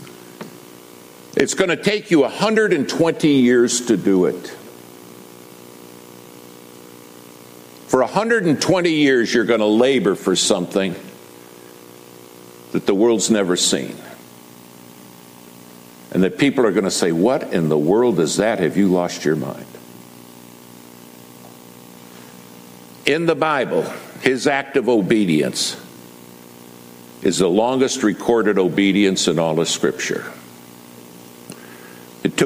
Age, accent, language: 60-79, American, English